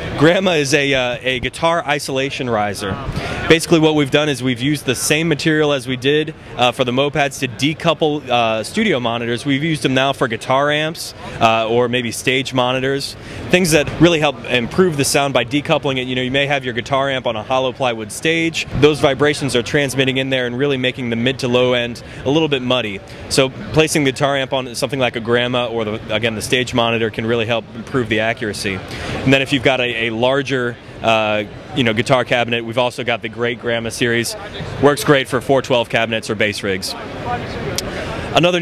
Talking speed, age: 205 wpm, 20-39